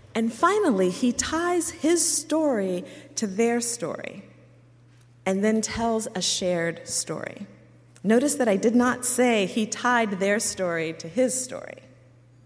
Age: 40-59